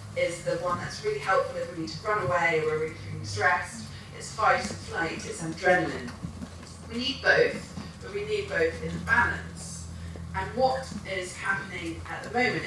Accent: British